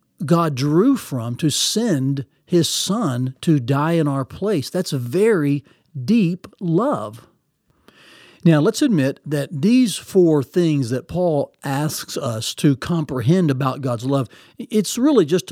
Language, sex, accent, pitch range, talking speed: English, male, American, 145-190 Hz, 140 wpm